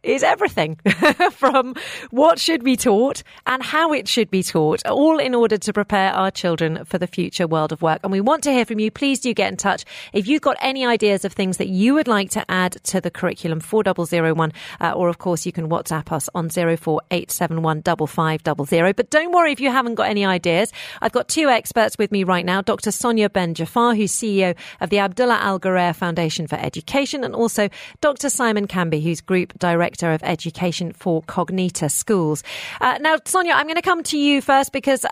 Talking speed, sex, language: 200 wpm, female, English